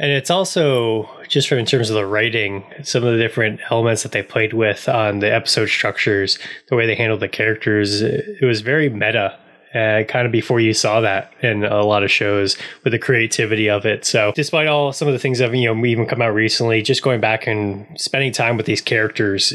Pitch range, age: 105-125 Hz, 20-39